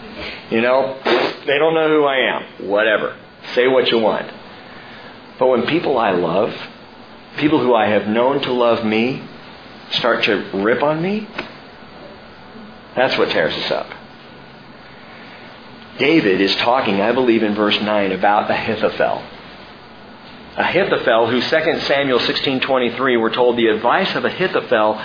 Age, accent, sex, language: 50-69, American, male, English